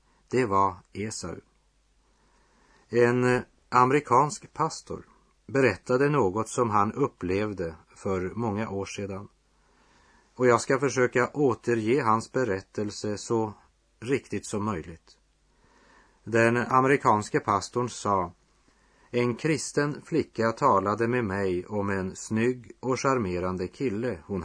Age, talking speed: 40-59, 105 wpm